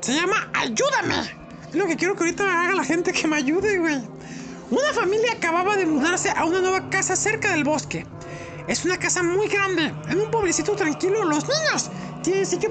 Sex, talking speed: male, 195 wpm